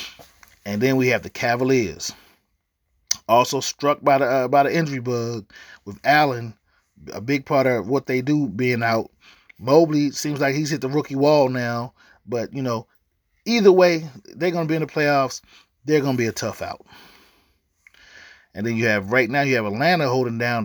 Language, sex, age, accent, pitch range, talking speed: English, male, 30-49, American, 115-160 Hz, 190 wpm